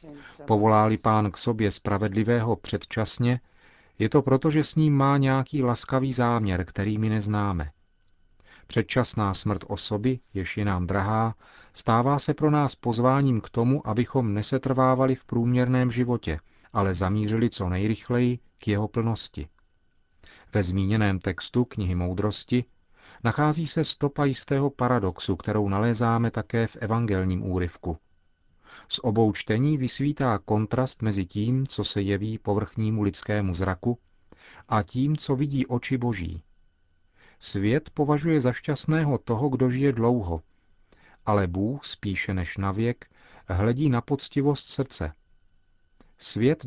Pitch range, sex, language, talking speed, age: 95-125 Hz, male, Czech, 125 wpm, 40-59